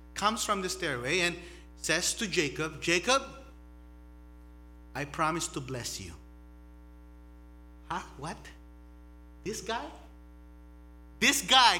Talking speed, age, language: 100 wpm, 30-49, English